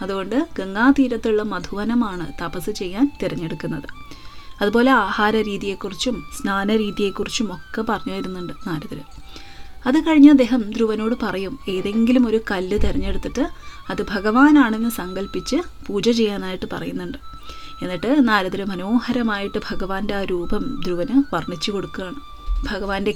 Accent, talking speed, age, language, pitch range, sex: native, 100 wpm, 20-39, Malayalam, 195-240 Hz, female